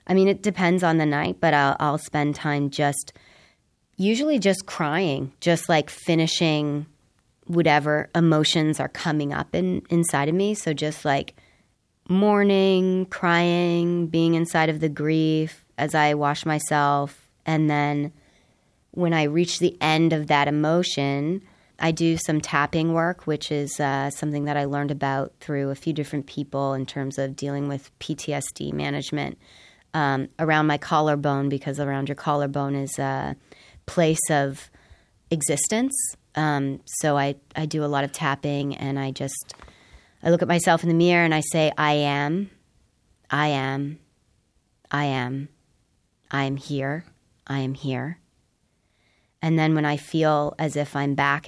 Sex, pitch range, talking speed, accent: female, 140-165 Hz, 155 wpm, American